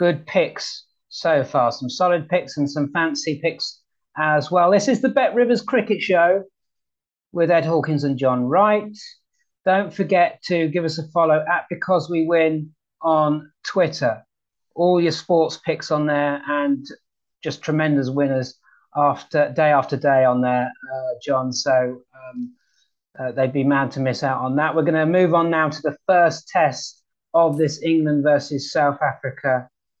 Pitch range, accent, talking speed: 140-170 Hz, British, 170 wpm